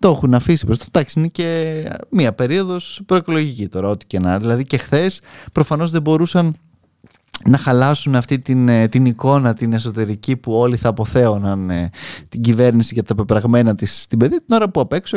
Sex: male